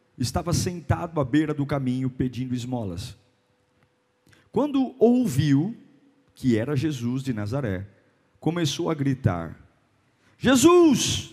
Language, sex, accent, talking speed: Portuguese, male, Brazilian, 100 wpm